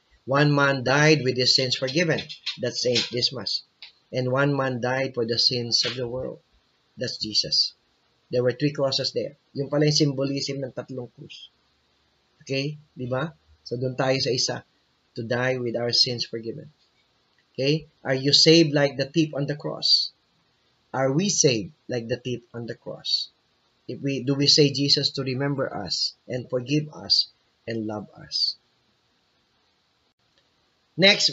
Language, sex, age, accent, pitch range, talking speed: English, male, 20-39, Filipino, 125-150 Hz, 160 wpm